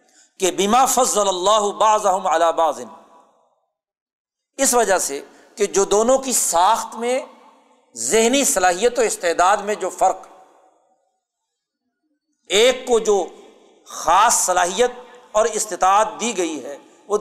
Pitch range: 185-245 Hz